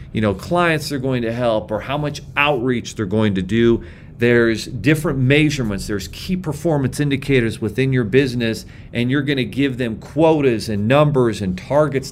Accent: American